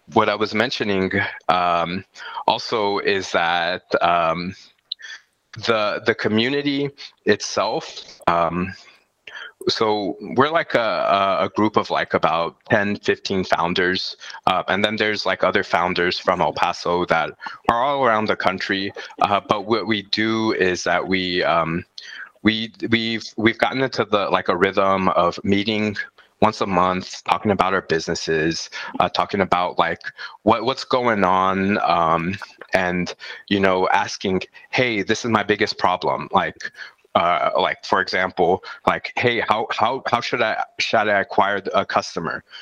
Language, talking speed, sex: English, 150 wpm, male